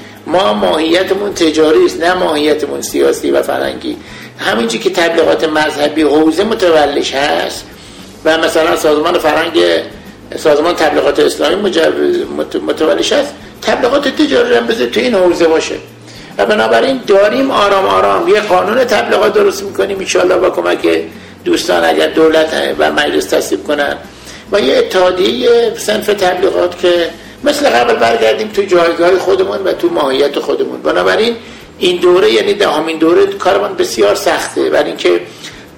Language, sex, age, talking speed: Persian, male, 60-79, 135 wpm